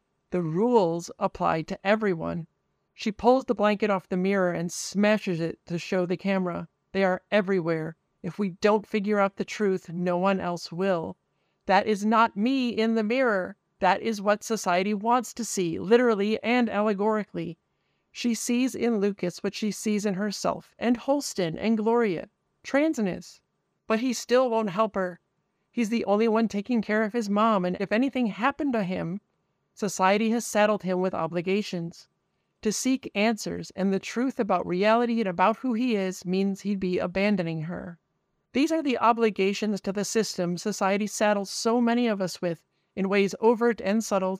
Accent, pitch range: American, 185-225 Hz